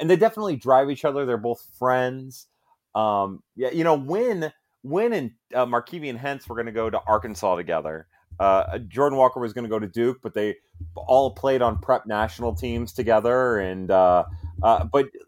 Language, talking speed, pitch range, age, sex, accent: English, 195 wpm, 100-135 Hz, 30-49, male, American